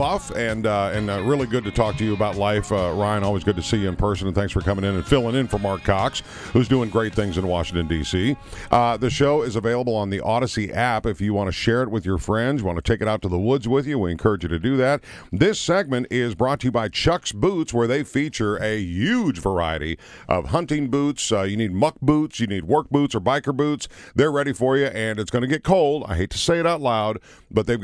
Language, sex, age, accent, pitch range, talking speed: English, male, 50-69, American, 95-125 Hz, 265 wpm